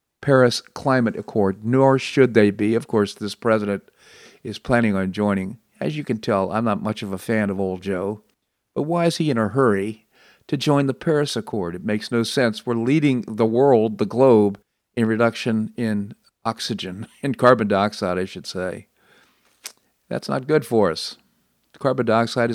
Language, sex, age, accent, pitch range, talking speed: English, male, 50-69, American, 105-135 Hz, 180 wpm